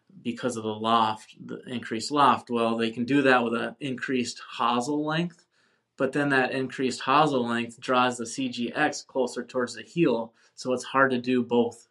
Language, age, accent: English, 20-39, American